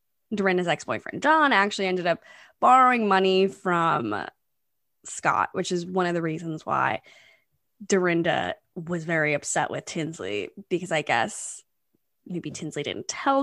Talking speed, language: 135 wpm, English